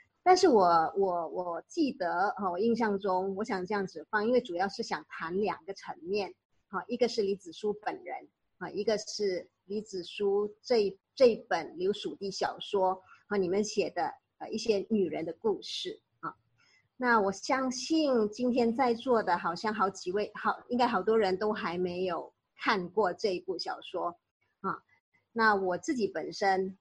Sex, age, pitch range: male, 30-49, 195-245 Hz